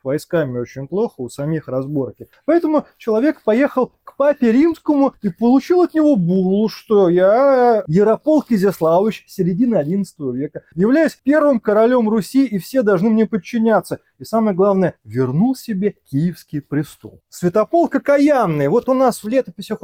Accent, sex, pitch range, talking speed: native, male, 160-225 Hz, 140 wpm